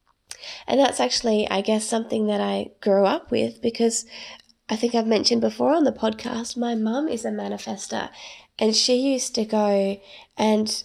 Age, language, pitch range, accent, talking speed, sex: 20-39, English, 190-230 Hz, Australian, 170 wpm, female